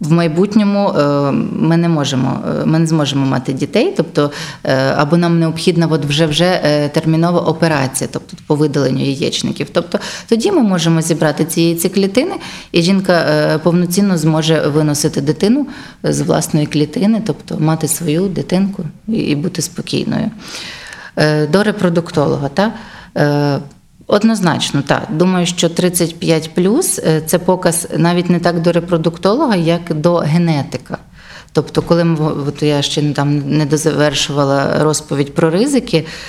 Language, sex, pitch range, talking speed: Ukrainian, female, 150-180 Hz, 120 wpm